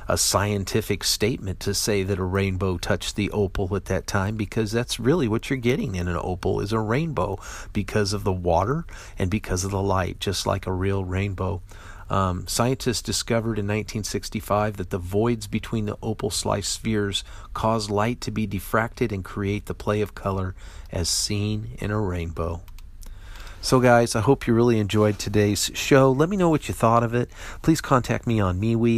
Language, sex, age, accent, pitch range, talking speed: English, male, 40-59, American, 95-115 Hz, 190 wpm